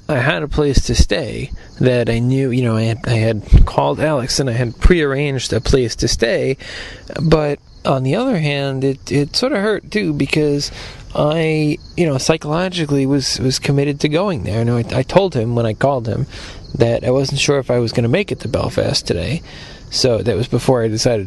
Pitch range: 115-140 Hz